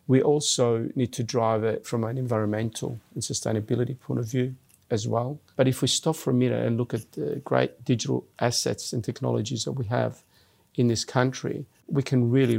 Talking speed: 195 wpm